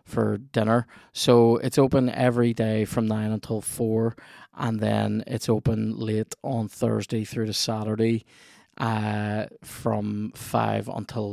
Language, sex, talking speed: English, male, 130 wpm